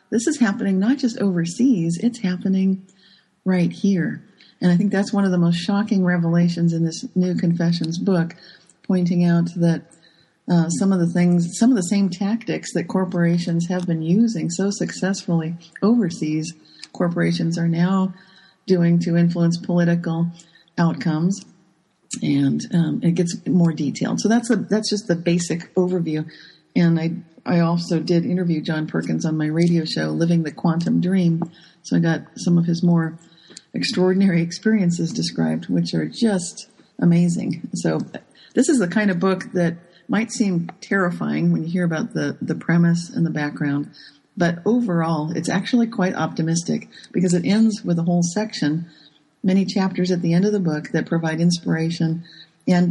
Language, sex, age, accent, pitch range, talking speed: English, female, 40-59, American, 165-195 Hz, 165 wpm